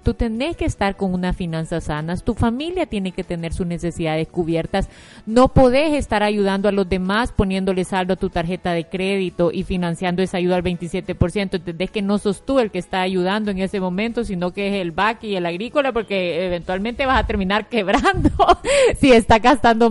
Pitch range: 190-240 Hz